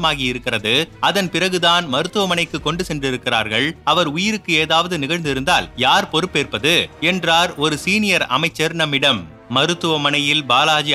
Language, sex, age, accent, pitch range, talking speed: Tamil, male, 30-49, native, 140-170 Hz, 105 wpm